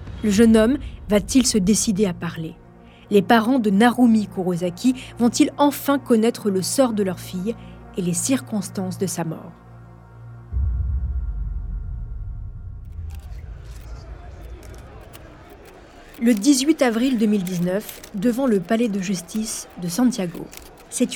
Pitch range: 180-240 Hz